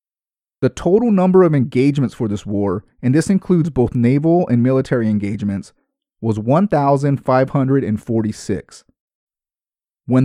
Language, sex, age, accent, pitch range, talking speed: English, male, 30-49, American, 110-150 Hz, 110 wpm